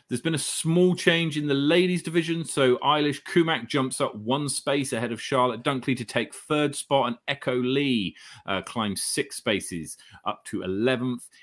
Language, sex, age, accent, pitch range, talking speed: English, male, 30-49, British, 110-145 Hz, 180 wpm